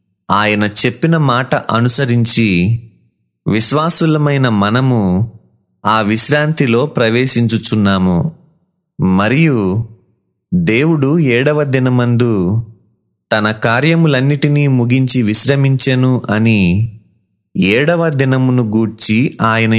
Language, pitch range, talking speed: Telugu, 110-140 Hz, 65 wpm